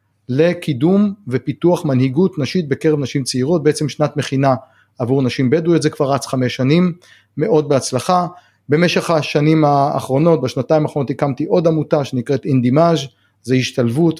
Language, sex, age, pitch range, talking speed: Hebrew, male, 30-49, 130-165 Hz, 135 wpm